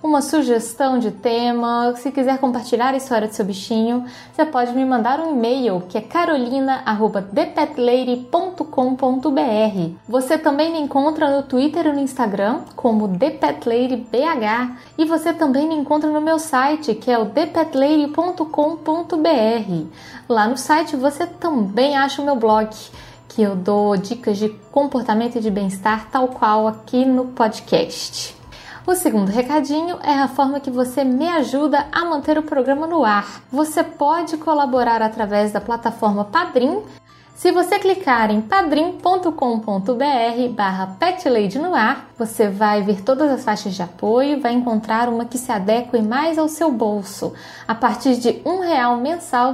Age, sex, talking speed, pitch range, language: 10-29, female, 150 wpm, 230-305 Hz, Portuguese